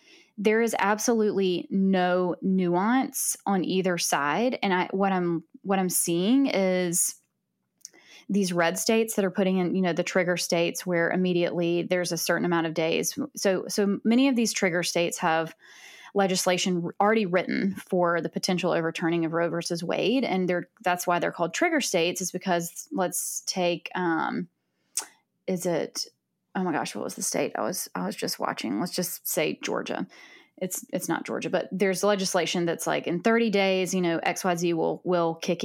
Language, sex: English, female